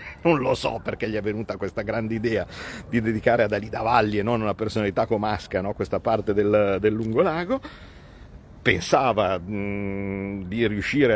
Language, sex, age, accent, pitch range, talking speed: Italian, male, 50-69, native, 100-130 Hz, 160 wpm